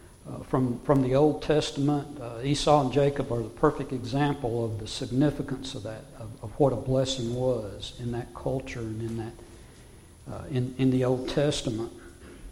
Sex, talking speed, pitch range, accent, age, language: male, 175 wpm, 120-150 Hz, American, 60-79, English